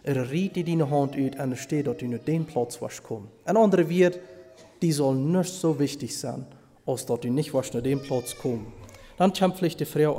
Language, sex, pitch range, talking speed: German, male, 130-160 Hz, 210 wpm